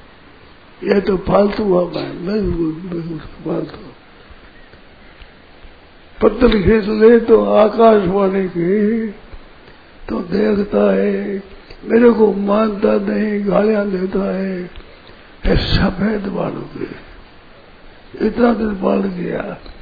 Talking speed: 90 wpm